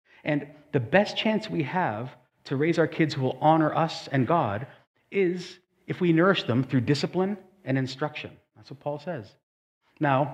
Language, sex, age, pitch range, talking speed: English, male, 40-59, 125-180 Hz, 175 wpm